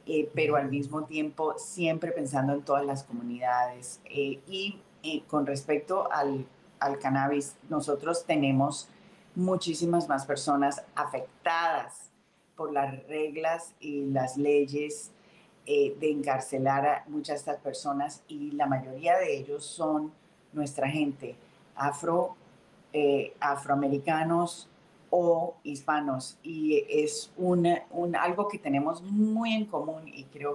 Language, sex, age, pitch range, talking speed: English, female, 40-59, 140-170 Hz, 125 wpm